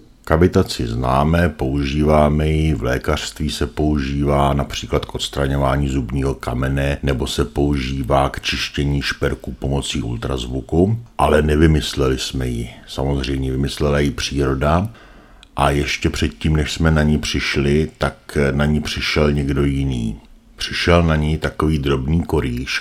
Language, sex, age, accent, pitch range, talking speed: Czech, male, 50-69, native, 70-75 Hz, 130 wpm